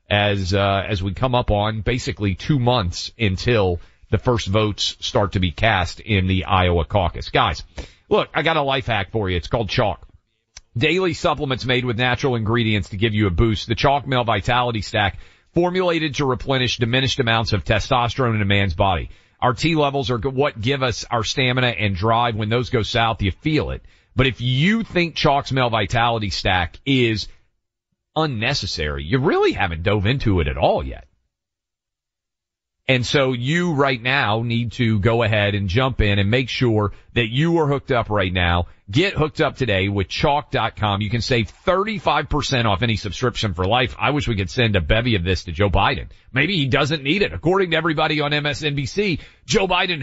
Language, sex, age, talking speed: English, male, 40-59, 190 wpm